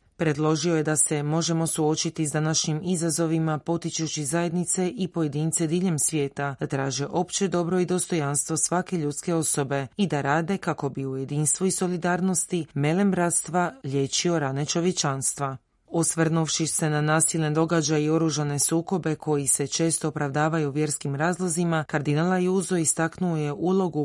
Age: 30-49